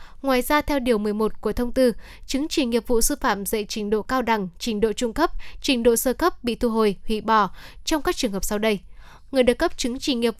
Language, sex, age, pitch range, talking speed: Vietnamese, female, 10-29, 215-265 Hz, 255 wpm